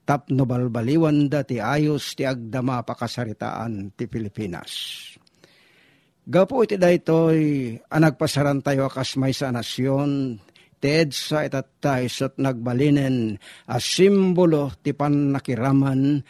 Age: 50-69